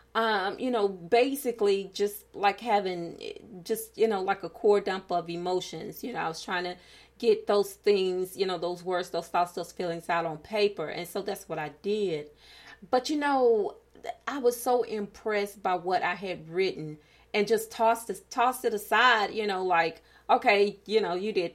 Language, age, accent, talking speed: English, 30-49, American, 190 wpm